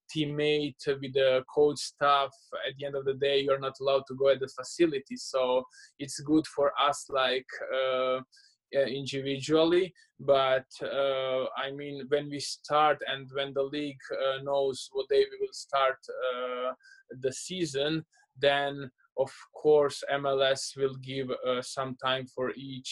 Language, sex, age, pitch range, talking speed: English, male, 20-39, 125-140 Hz, 155 wpm